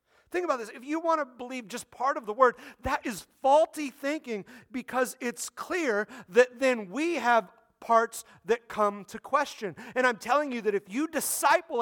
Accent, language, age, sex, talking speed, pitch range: American, English, 40-59, male, 190 wpm, 215-285 Hz